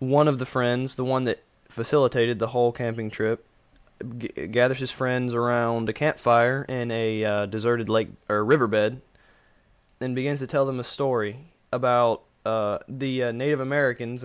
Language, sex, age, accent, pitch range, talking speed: English, male, 20-39, American, 110-130 Hz, 160 wpm